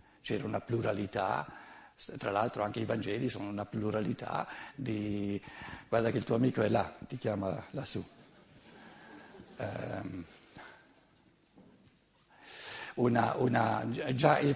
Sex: male